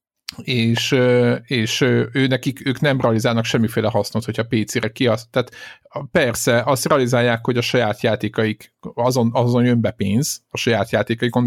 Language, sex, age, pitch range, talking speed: Hungarian, male, 50-69, 110-130 Hz, 155 wpm